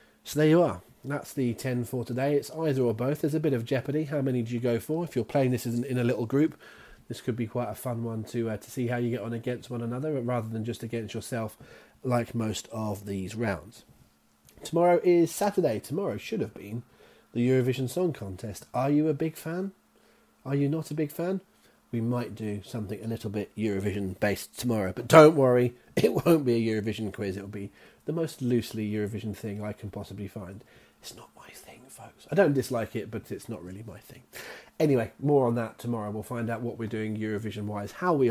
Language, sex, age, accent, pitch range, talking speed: English, male, 30-49, British, 110-140 Hz, 220 wpm